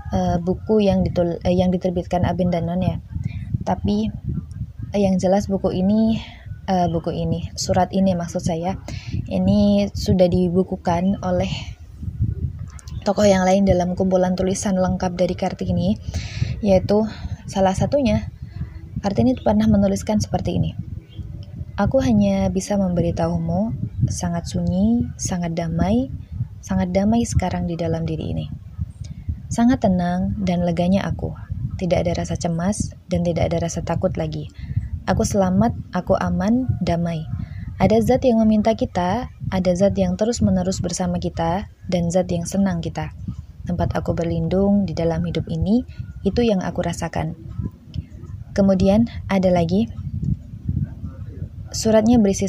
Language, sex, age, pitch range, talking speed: Indonesian, female, 20-39, 160-195 Hz, 130 wpm